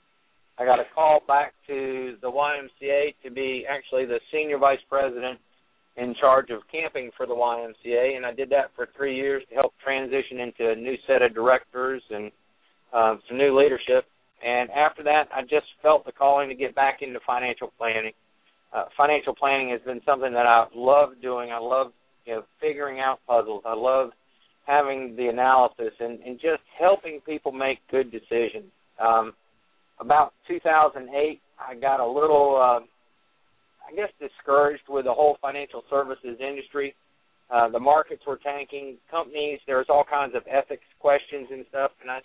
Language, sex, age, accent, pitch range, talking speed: English, male, 50-69, American, 125-145 Hz, 170 wpm